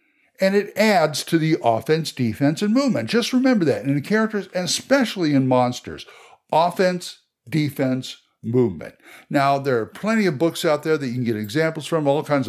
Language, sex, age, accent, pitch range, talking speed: English, male, 60-79, American, 135-180 Hz, 185 wpm